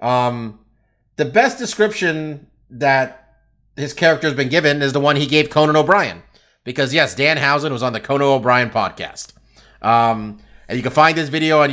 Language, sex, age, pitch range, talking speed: English, male, 30-49, 115-160 Hz, 180 wpm